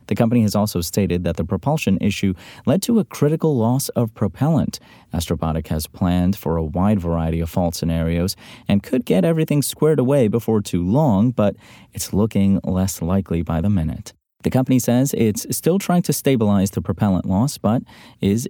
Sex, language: male, English